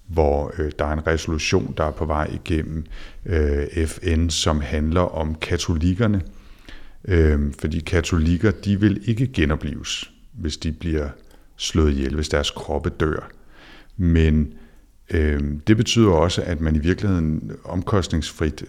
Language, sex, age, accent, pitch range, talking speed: Danish, male, 60-79, native, 75-90 Hz, 140 wpm